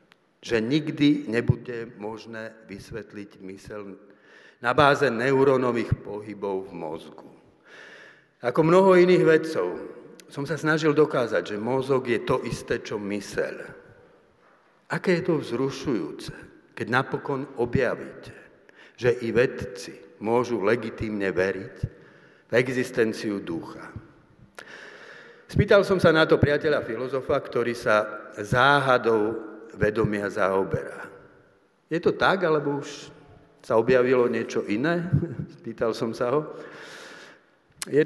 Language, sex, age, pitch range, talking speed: Slovak, male, 60-79, 110-160 Hz, 110 wpm